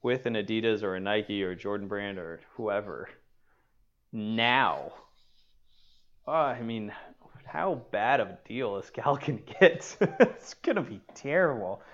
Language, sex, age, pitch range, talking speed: English, male, 20-39, 100-120 Hz, 135 wpm